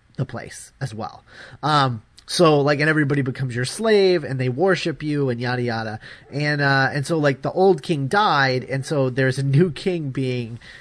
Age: 30-49